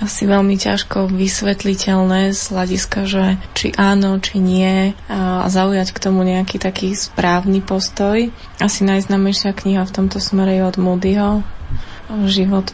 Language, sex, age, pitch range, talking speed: Slovak, female, 20-39, 185-200 Hz, 135 wpm